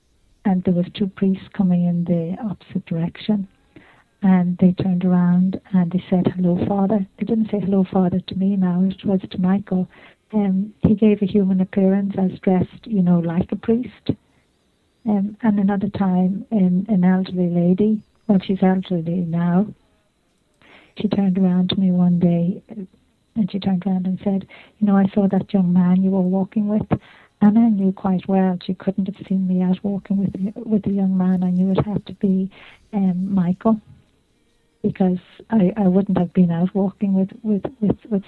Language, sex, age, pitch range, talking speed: English, female, 50-69, 185-200 Hz, 185 wpm